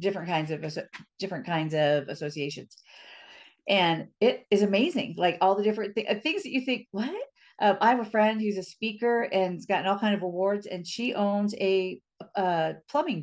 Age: 40-59